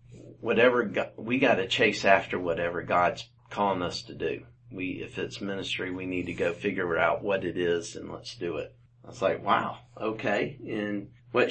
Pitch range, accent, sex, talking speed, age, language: 100-120 Hz, American, male, 180 wpm, 40-59, English